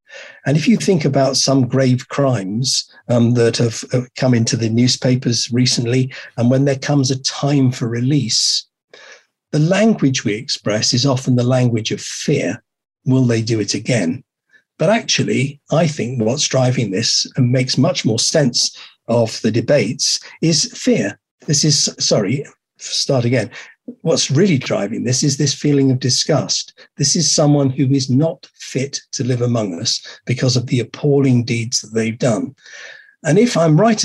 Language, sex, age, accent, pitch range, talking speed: English, male, 50-69, British, 125-145 Hz, 165 wpm